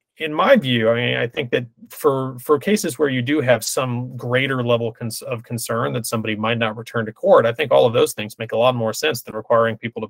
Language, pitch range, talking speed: English, 115-145 Hz, 250 wpm